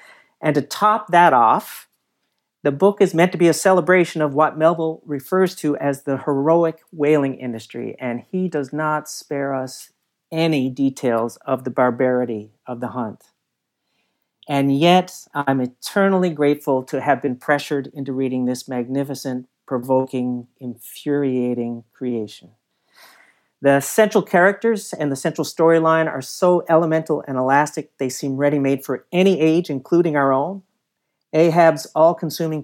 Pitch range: 135-165 Hz